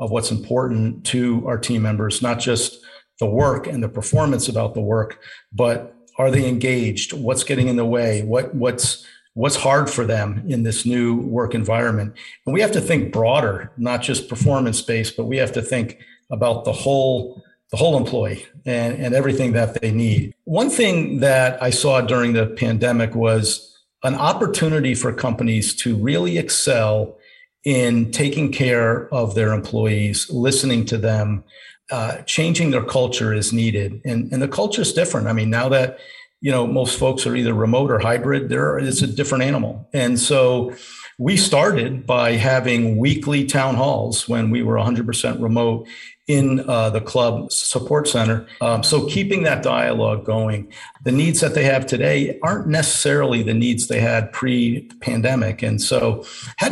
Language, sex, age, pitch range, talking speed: English, male, 50-69, 115-135 Hz, 170 wpm